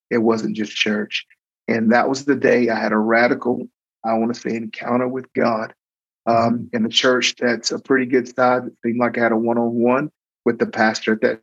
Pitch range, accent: 110-120 Hz, American